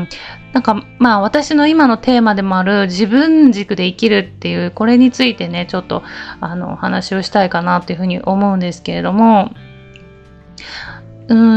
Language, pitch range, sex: Japanese, 185-250 Hz, female